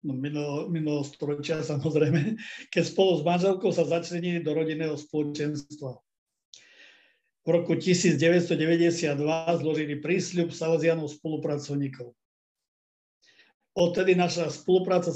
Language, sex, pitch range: Slovak, male, 145-170 Hz